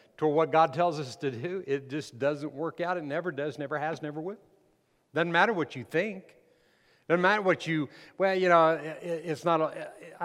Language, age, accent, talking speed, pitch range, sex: English, 50-69, American, 205 wpm, 120-160 Hz, male